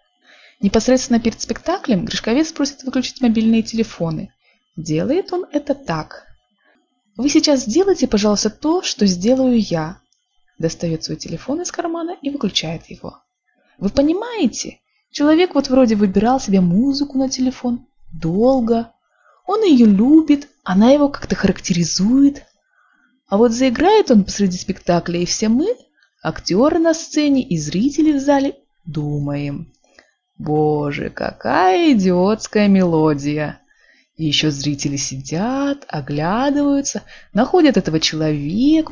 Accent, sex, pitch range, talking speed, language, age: native, female, 185-285 Hz, 115 wpm, Russian, 20-39